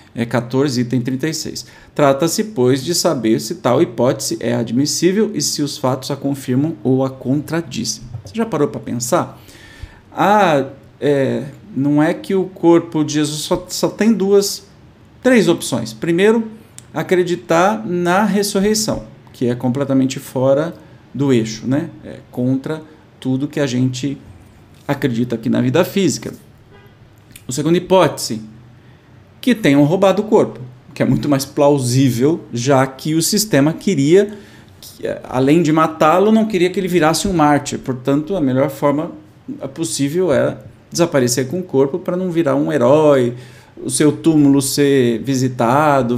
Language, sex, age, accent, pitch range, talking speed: Portuguese, male, 40-59, Brazilian, 125-170 Hz, 145 wpm